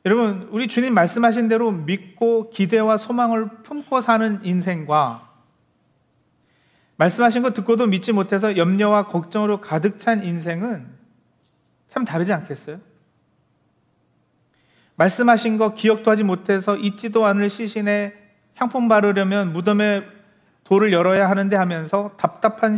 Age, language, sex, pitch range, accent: 40-59, Korean, male, 175-220 Hz, native